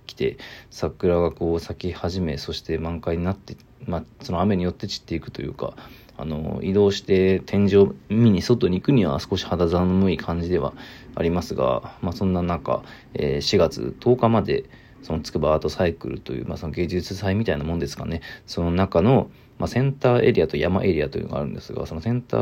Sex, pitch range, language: male, 85-105 Hz, Japanese